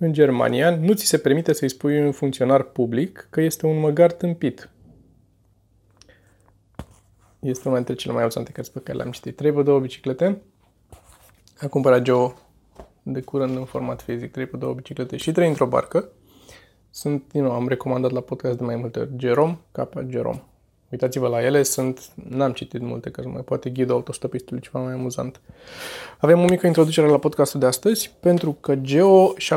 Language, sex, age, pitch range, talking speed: Romanian, male, 20-39, 125-155 Hz, 170 wpm